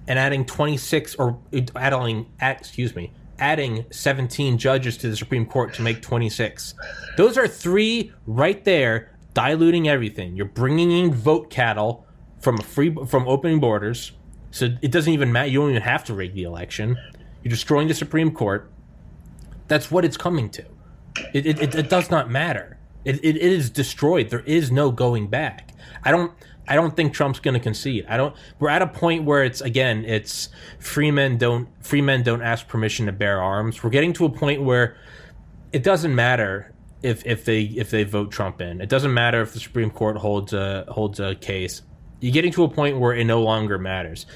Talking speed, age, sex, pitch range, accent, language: 190 wpm, 30-49, male, 110-150 Hz, American, English